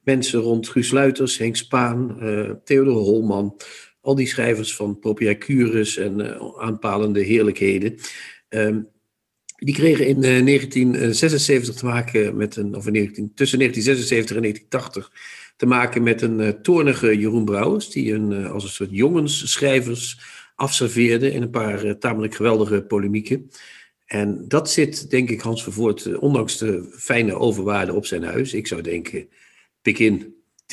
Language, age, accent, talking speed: Dutch, 50-69, Dutch, 150 wpm